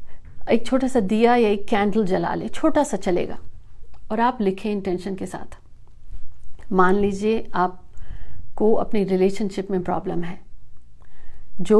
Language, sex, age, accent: Hindi, female, 50-69, native